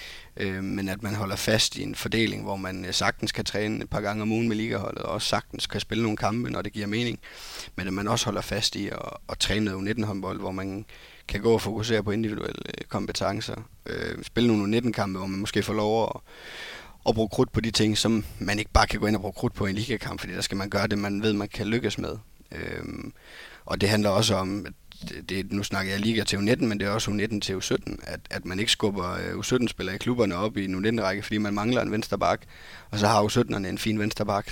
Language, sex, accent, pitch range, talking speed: Danish, male, native, 100-110 Hz, 245 wpm